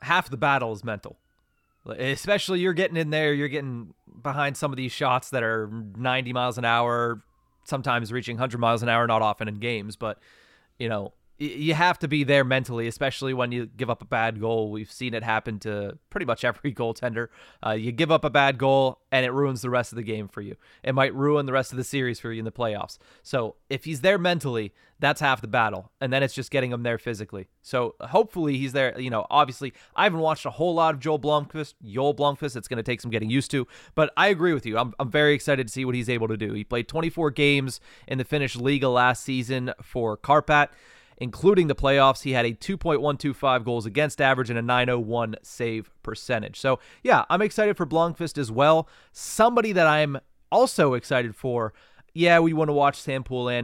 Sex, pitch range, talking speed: male, 120-145 Hz, 220 wpm